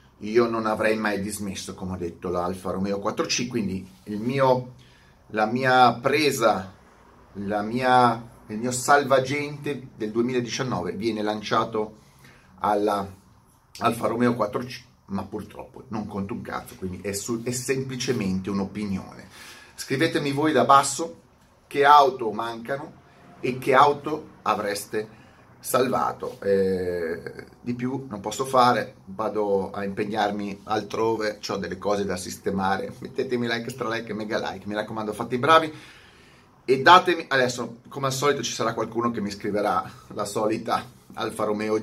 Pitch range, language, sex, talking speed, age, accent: 100-125 Hz, Italian, male, 135 wpm, 30-49, native